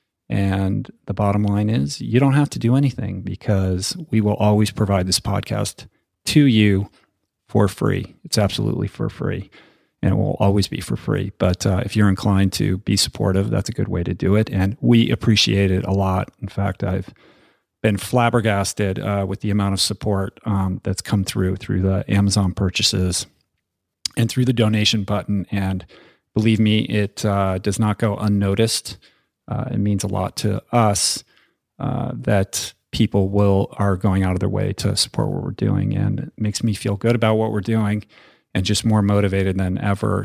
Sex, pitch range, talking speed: male, 95-110 Hz, 185 wpm